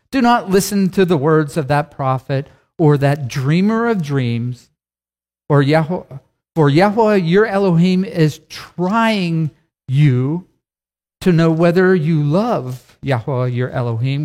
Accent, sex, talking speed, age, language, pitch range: American, male, 125 wpm, 50-69, English, 130-185 Hz